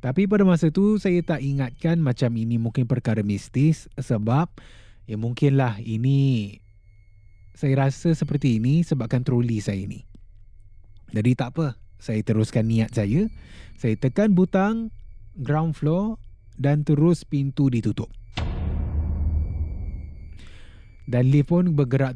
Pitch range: 105-155 Hz